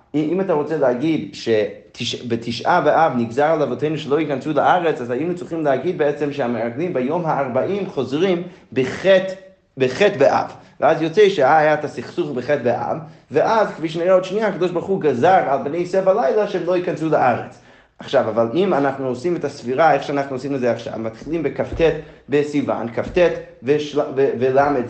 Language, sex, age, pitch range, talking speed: Hebrew, male, 30-49, 135-180 Hz, 160 wpm